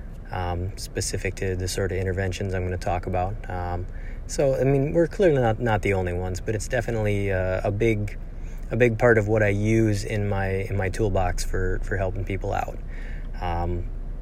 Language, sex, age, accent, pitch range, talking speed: English, male, 30-49, American, 95-110 Hz, 200 wpm